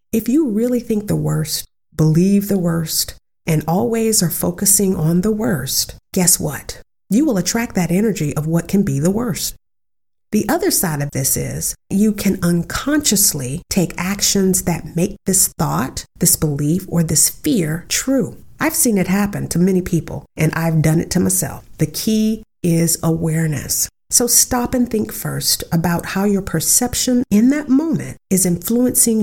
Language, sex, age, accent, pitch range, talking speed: English, female, 50-69, American, 160-215 Hz, 165 wpm